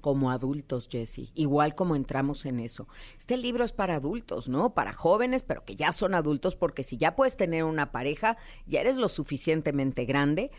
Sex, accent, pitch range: female, Mexican, 140-185 Hz